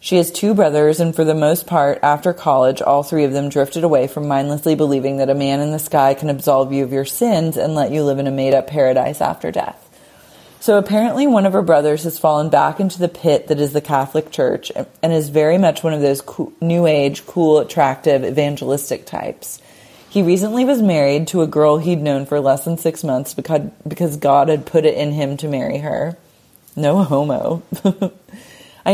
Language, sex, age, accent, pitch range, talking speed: English, female, 30-49, American, 145-185 Hz, 205 wpm